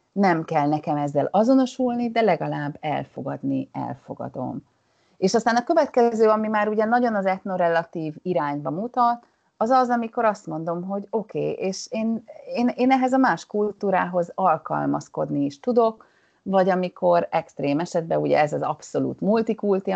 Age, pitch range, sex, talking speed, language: 30-49, 155-220 Hz, female, 145 wpm, Hungarian